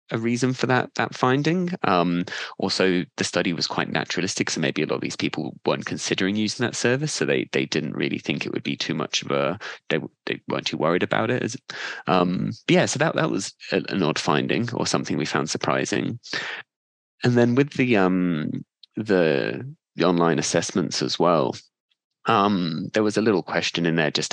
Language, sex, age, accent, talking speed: English, male, 20-39, British, 195 wpm